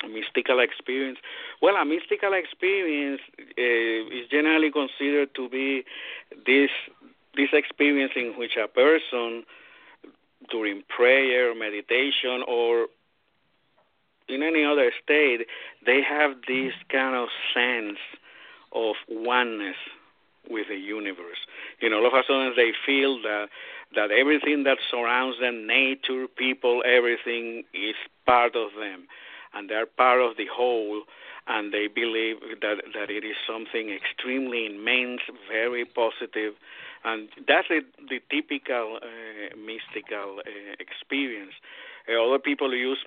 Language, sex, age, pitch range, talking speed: English, male, 50-69, 110-135 Hz, 130 wpm